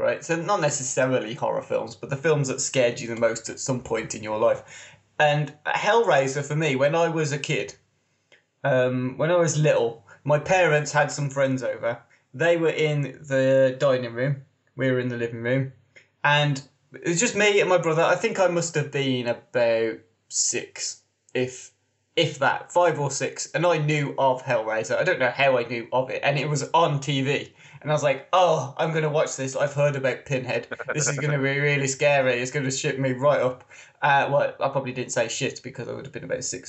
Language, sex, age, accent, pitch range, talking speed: English, male, 20-39, British, 130-155 Hz, 220 wpm